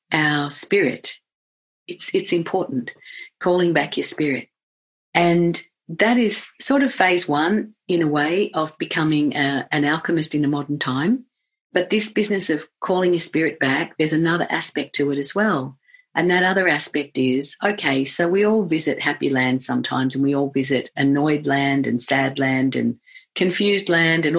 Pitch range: 140-215 Hz